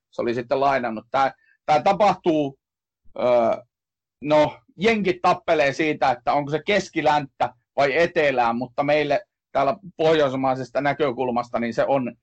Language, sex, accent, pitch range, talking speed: Finnish, male, native, 125-170 Hz, 125 wpm